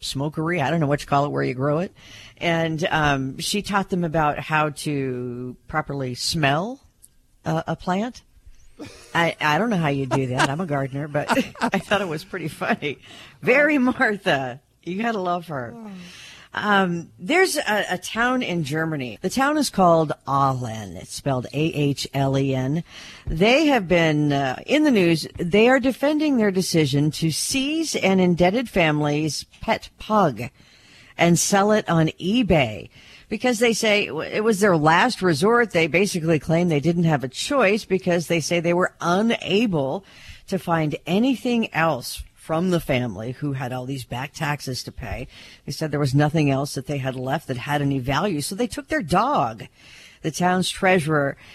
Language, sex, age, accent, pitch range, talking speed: English, female, 50-69, American, 140-195 Hz, 170 wpm